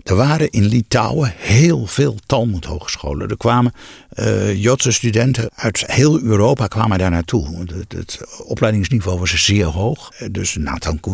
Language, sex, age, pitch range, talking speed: Dutch, male, 60-79, 95-115 Hz, 145 wpm